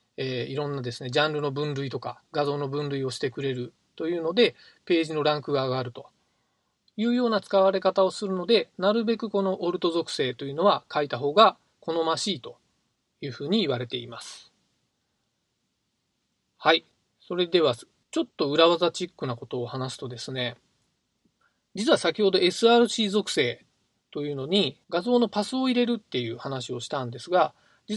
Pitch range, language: 140-210 Hz, Japanese